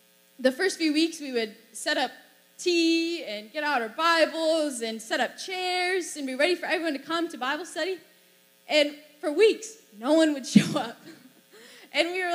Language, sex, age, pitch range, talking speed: English, female, 10-29, 240-325 Hz, 190 wpm